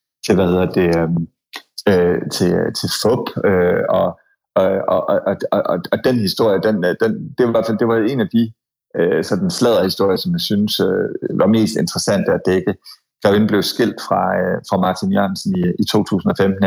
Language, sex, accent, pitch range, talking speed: Danish, male, native, 95-120 Hz, 175 wpm